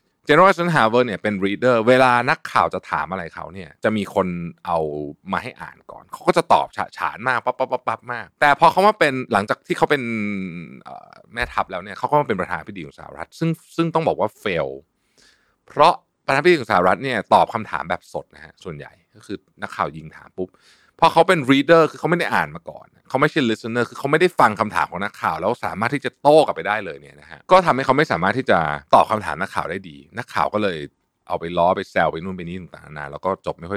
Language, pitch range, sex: Thai, 95-150 Hz, male